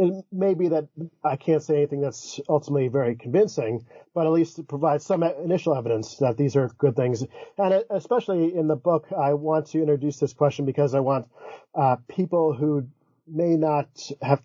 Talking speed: 185 wpm